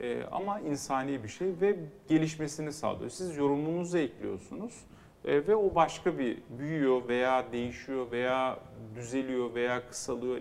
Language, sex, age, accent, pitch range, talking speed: Turkish, male, 40-59, native, 125-175 Hz, 120 wpm